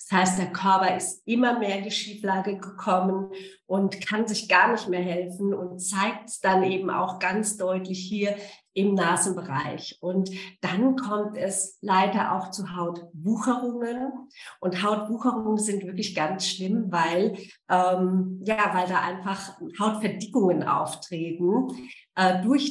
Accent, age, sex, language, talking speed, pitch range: German, 50-69, female, German, 130 wpm, 185-210 Hz